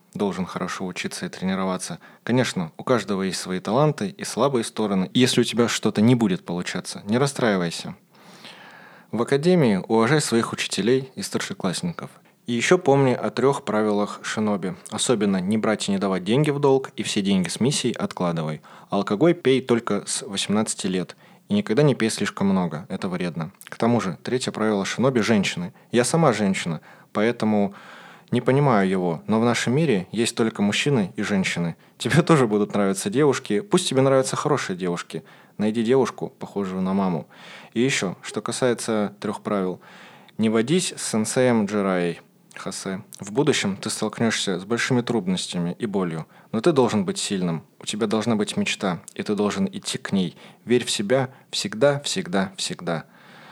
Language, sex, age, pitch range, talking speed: Russian, male, 20-39, 100-130 Hz, 165 wpm